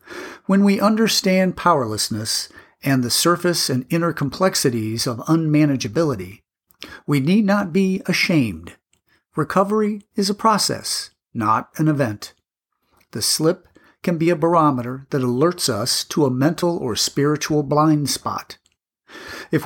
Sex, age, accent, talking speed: male, 50-69, American, 125 wpm